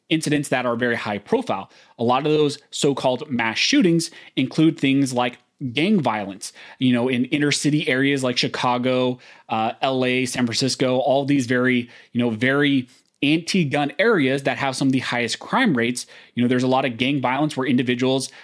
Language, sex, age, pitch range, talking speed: English, male, 30-49, 120-145 Hz, 180 wpm